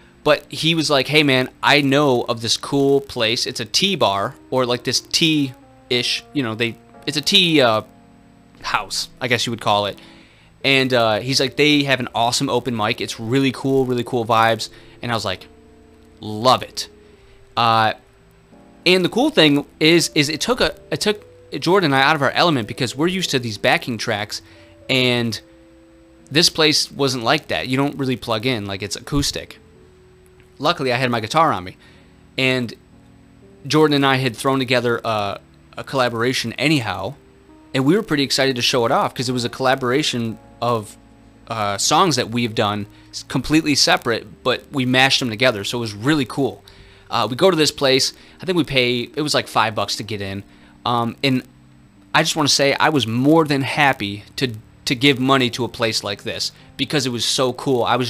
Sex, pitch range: male, 110-140 Hz